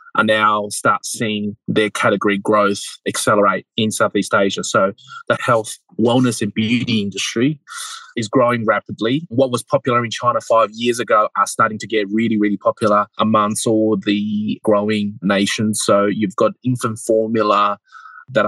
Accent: Australian